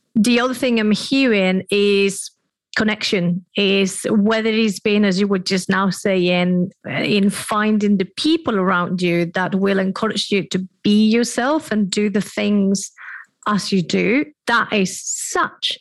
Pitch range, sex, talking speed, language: 195-235 Hz, female, 150 wpm, English